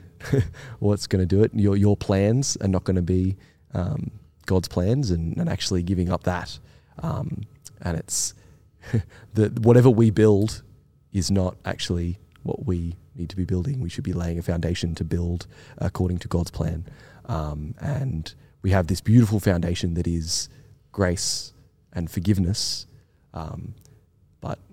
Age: 20-39